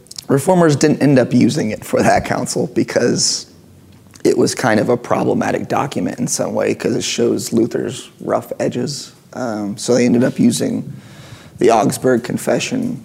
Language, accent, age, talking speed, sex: English, American, 30-49, 160 wpm, male